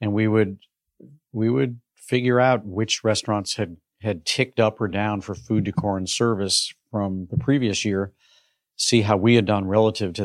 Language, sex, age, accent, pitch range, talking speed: English, male, 50-69, American, 100-115 Hz, 180 wpm